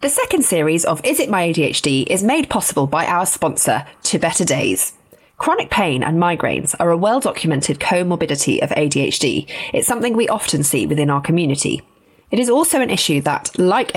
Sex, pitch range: female, 150-225 Hz